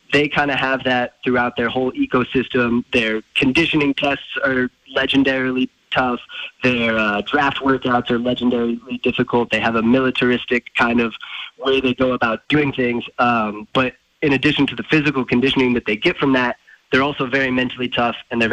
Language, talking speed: English, 175 wpm